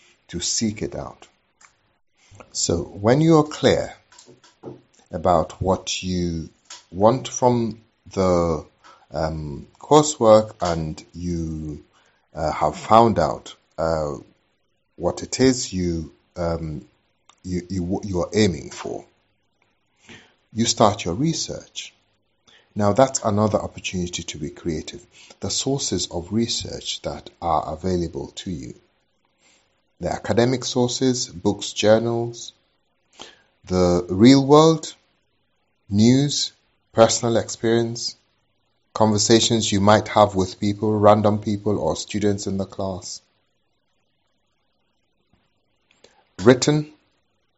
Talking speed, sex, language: 95 wpm, male, English